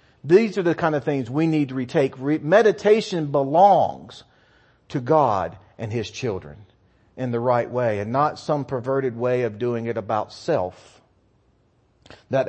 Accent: American